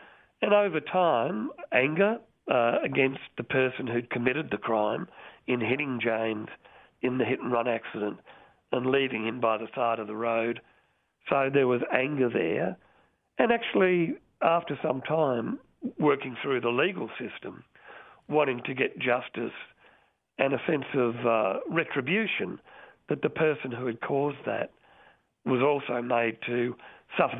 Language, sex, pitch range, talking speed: English, male, 120-150 Hz, 140 wpm